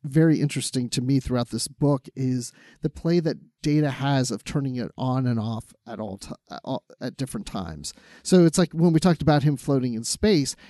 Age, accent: 40-59, American